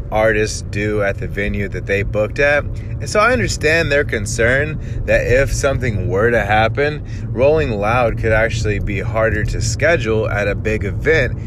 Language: English